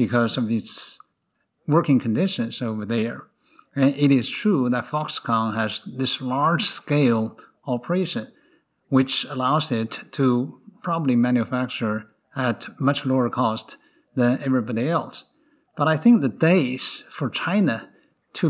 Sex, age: male, 50-69